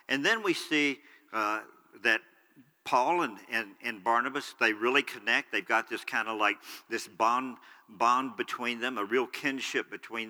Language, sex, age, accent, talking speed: English, male, 50-69, American, 170 wpm